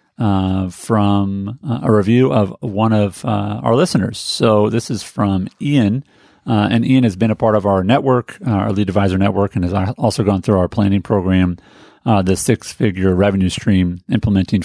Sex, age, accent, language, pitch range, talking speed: male, 40-59, American, English, 95-115 Hz, 185 wpm